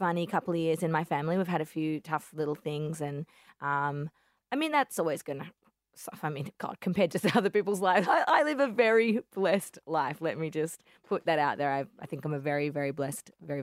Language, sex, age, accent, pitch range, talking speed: English, female, 20-39, Australian, 150-200 Hz, 240 wpm